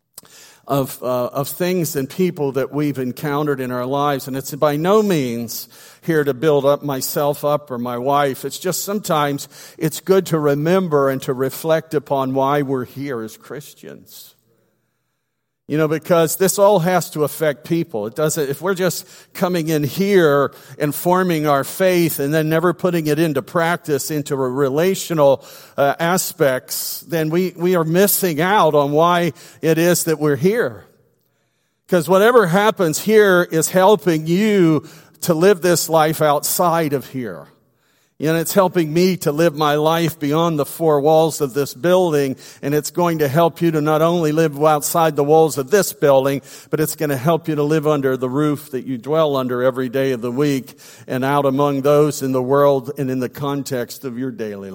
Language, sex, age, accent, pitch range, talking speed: English, male, 50-69, American, 140-170 Hz, 185 wpm